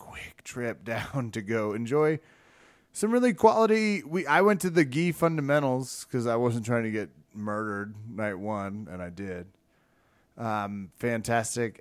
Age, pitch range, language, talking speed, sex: 30-49, 100-135 Hz, English, 145 wpm, male